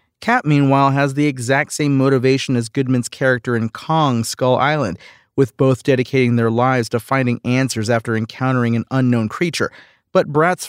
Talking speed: 165 wpm